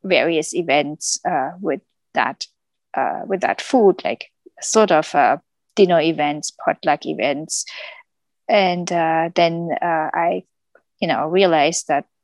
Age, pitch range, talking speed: 20-39, 160-215 Hz, 125 wpm